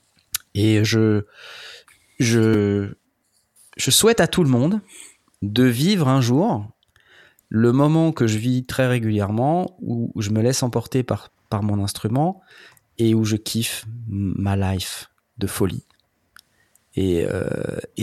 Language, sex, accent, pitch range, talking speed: French, male, French, 105-125 Hz, 130 wpm